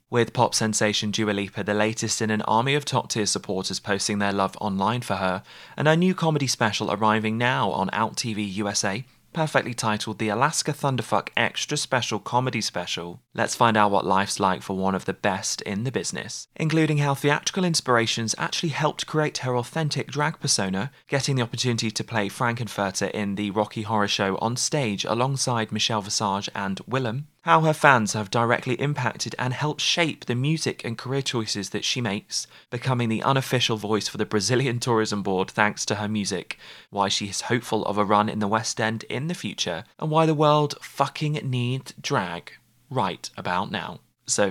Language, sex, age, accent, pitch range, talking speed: English, male, 20-39, British, 105-135 Hz, 185 wpm